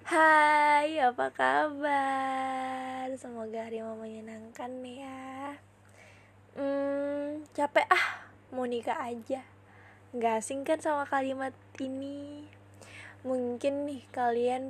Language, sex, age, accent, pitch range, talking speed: Indonesian, female, 10-29, native, 235-300 Hz, 90 wpm